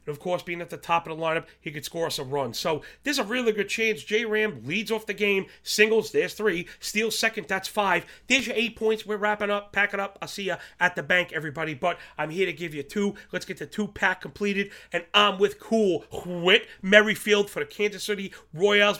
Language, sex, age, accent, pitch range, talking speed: English, male, 30-49, American, 155-210 Hz, 235 wpm